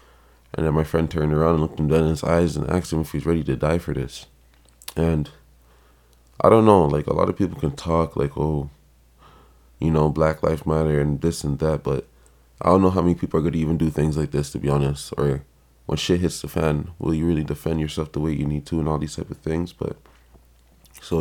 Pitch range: 70-85 Hz